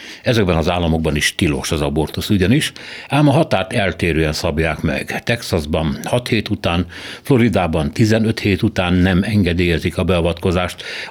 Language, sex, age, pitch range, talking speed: Hungarian, male, 60-79, 85-105 Hz, 140 wpm